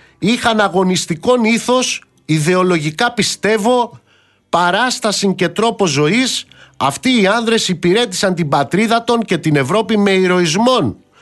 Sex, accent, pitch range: male, native, 180-240 Hz